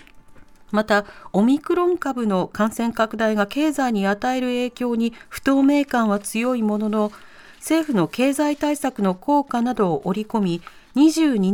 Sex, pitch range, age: female, 195-275 Hz, 40-59